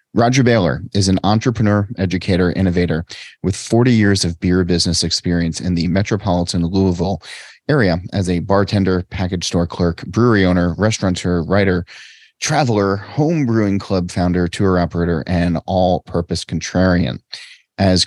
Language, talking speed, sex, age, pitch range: English, 135 wpm, male, 30-49, 85-105 Hz